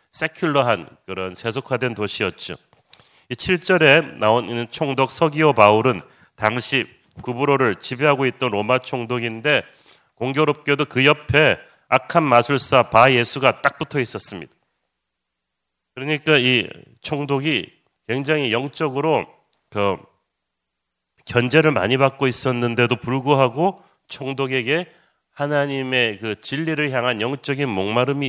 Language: Korean